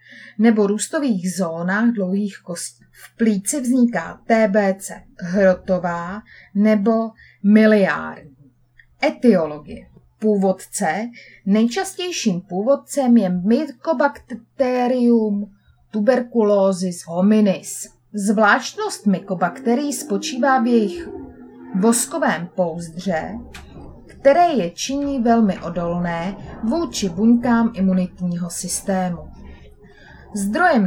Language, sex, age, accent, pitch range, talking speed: Czech, female, 30-49, native, 185-250 Hz, 70 wpm